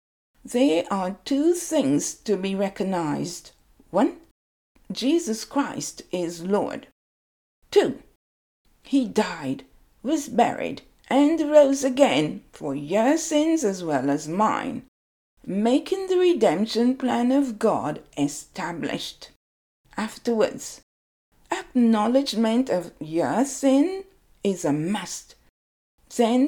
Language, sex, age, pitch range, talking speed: English, female, 60-79, 200-280 Hz, 95 wpm